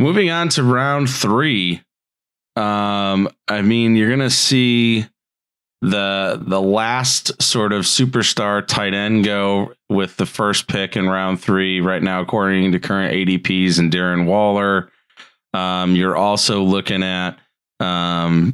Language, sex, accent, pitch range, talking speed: English, male, American, 85-100 Hz, 135 wpm